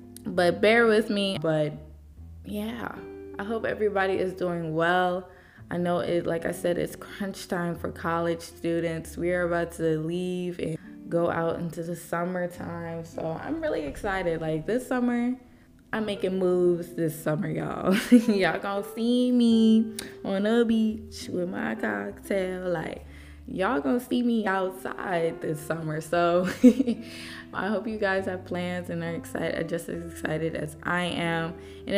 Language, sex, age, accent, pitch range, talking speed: English, female, 20-39, American, 160-210 Hz, 155 wpm